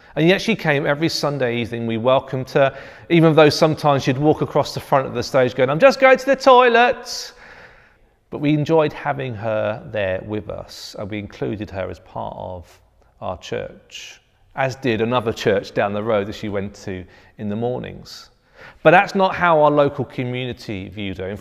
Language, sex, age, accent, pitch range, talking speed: English, male, 40-59, British, 105-145 Hz, 195 wpm